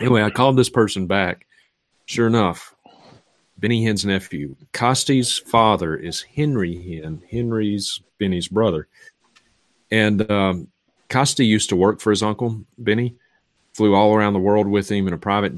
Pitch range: 95-110 Hz